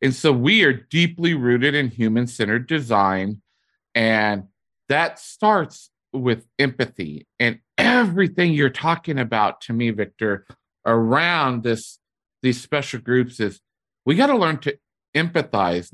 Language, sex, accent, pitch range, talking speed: English, male, American, 110-145 Hz, 130 wpm